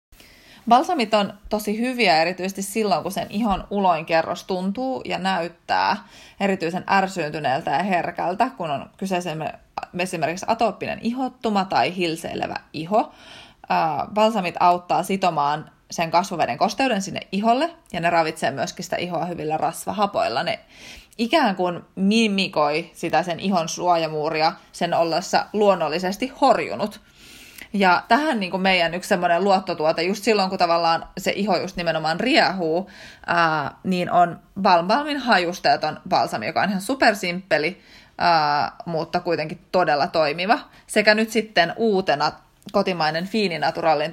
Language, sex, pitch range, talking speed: Finnish, female, 170-215 Hz, 120 wpm